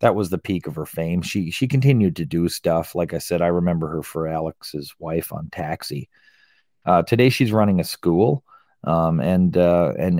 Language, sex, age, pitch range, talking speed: English, male, 40-59, 85-130 Hz, 195 wpm